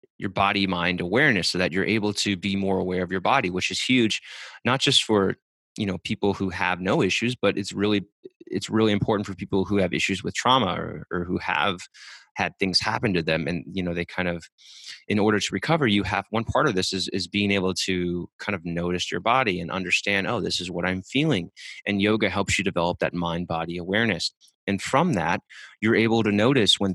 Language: English